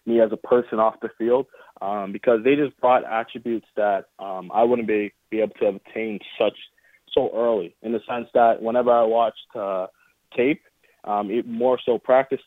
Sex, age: male, 20-39